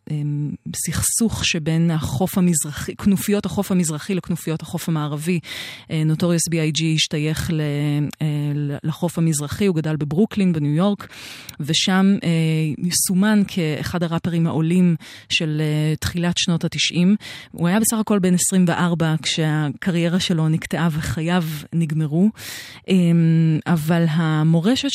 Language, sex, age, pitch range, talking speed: Hebrew, female, 30-49, 155-180 Hz, 105 wpm